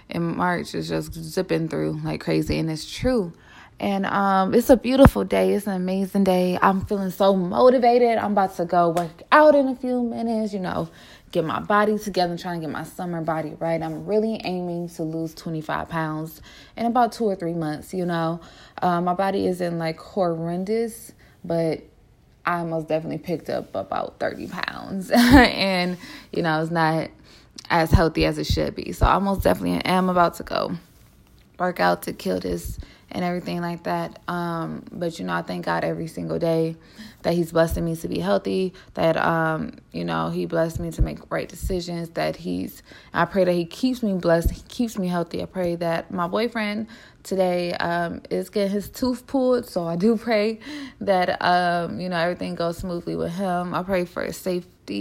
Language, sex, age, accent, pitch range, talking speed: English, female, 20-39, American, 160-200 Hz, 195 wpm